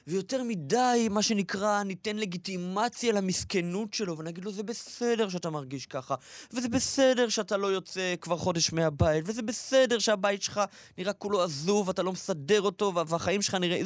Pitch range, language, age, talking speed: 140-215 Hz, Hebrew, 20-39, 160 wpm